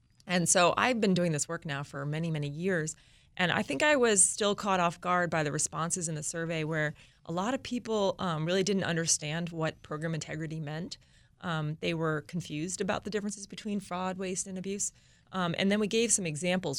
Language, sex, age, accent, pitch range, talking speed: English, female, 30-49, American, 155-185 Hz, 210 wpm